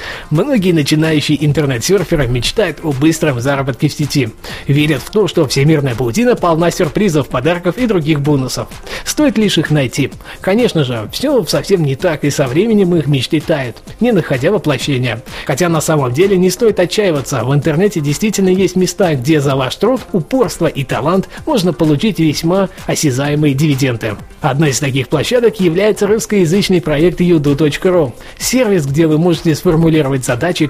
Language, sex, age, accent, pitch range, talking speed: Russian, male, 20-39, native, 145-185 Hz, 150 wpm